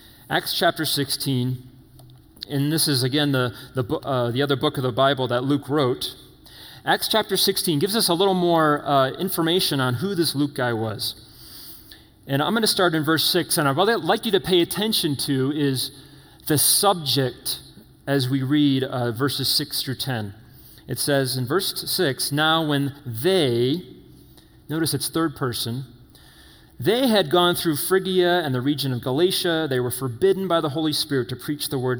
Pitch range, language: 125-165 Hz, English